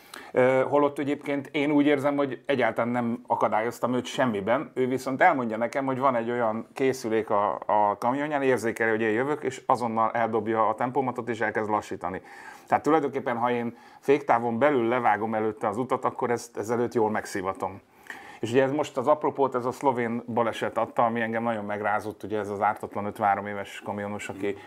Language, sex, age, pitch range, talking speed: Hungarian, male, 30-49, 105-125 Hz, 175 wpm